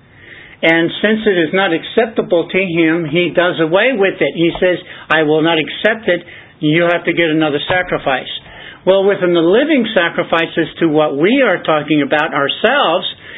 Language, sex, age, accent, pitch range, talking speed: English, male, 60-79, American, 170-210 Hz, 170 wpm